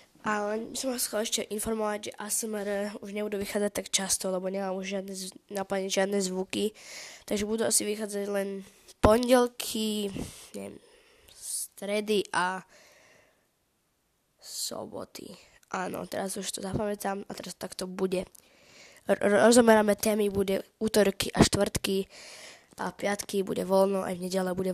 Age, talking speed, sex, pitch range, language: 10-29, 130 wpm, female, 190-220 Hz, Slovak